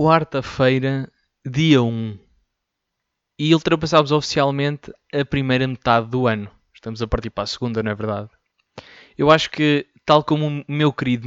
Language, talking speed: Portuguese, 150 wpm